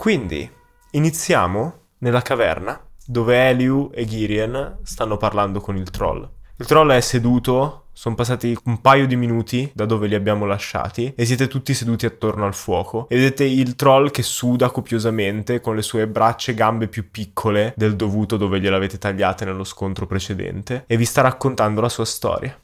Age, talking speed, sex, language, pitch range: 20-39, 170 wpm, male, Italian, 110-130 Hz